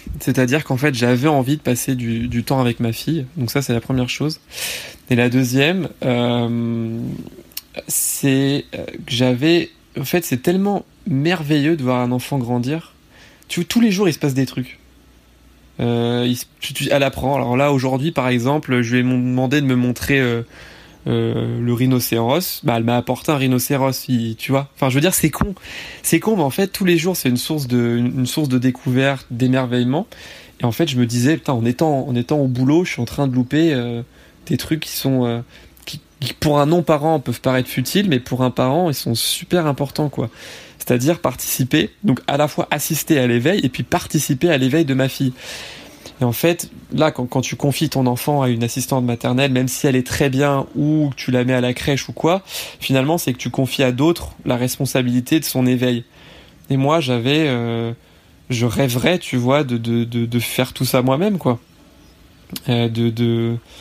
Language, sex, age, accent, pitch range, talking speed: French, male, 20-39, French, 120-150 Hz, 210 wpm